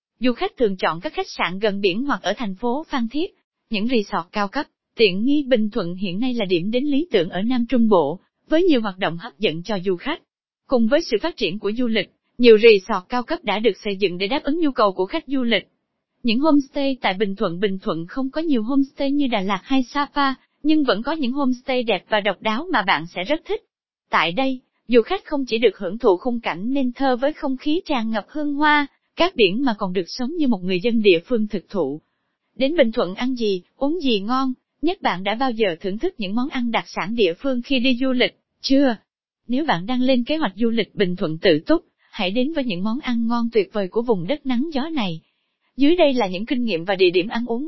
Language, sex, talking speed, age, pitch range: Vietnamese, female, 250 wpm, 20-39, 205-275 Hz